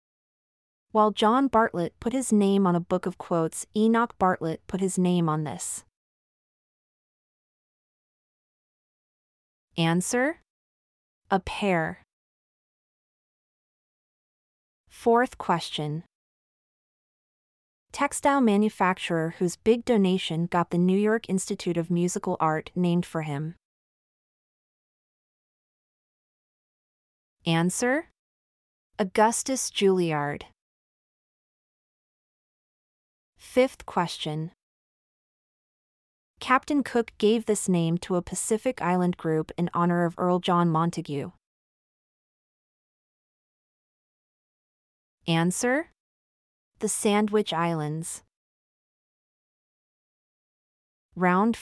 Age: 30-49